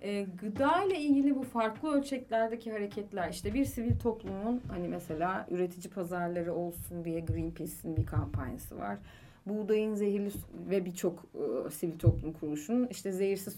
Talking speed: 135 wpm